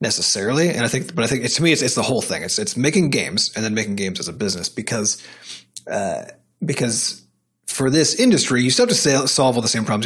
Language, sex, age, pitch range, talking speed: English, male, 30-49, 110-140 Hz, 250 wpm